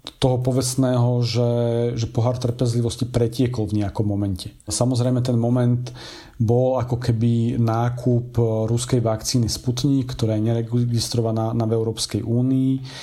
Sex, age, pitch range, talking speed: male, 40-59, 115-130 Hz, 120 wpm